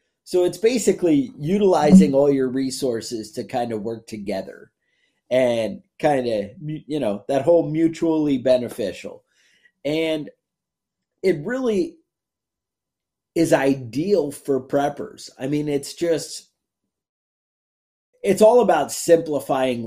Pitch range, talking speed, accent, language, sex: 130-165 Hz, 110 wpm, American, English, male